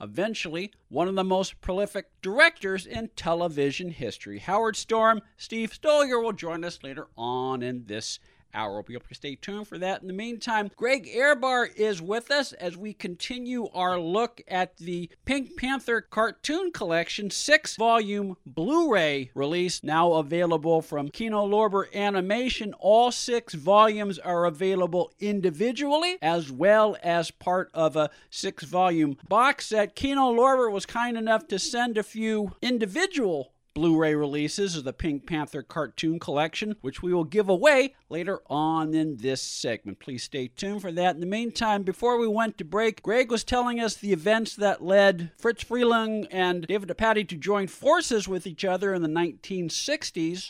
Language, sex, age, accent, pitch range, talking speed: English, male, 50-69, American, 165-225 Hz, 160 wpm